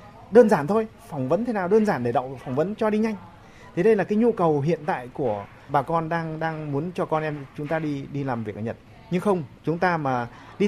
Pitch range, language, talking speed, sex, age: 130-190 Hz, Vietnamese, 265 wpm, male, 20-39